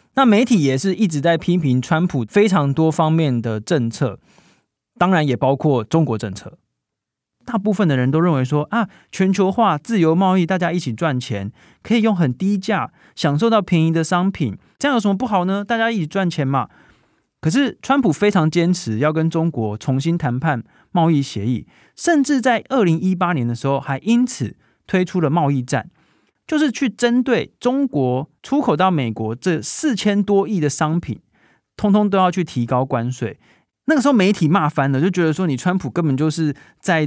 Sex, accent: male, native